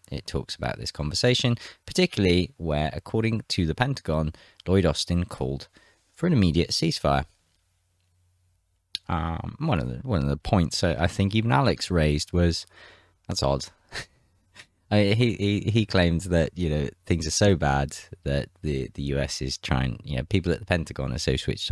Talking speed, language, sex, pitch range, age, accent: 165 wpm, English, male, 75-100 Hz, 20-39, British